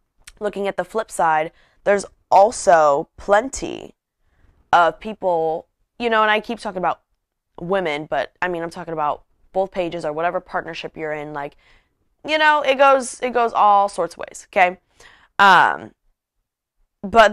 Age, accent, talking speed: 10-29, American, 155 wpm